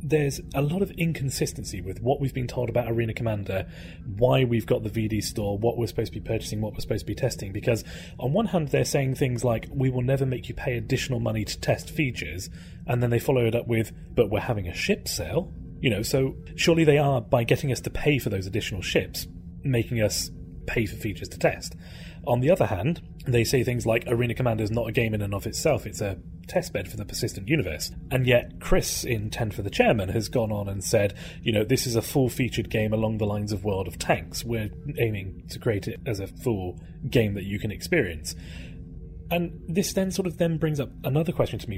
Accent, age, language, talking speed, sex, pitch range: British, 30-49, English, 235 wpm, male, 105-140 Hz